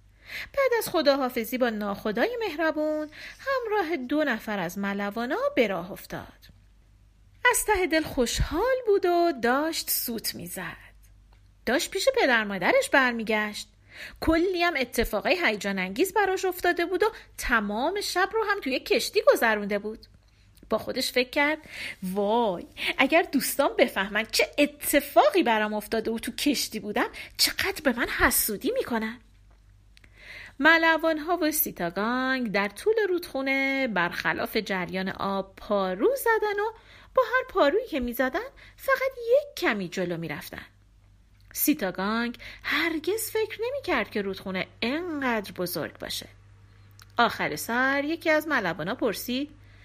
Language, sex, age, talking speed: Persian, female, 40-59, 130 wpm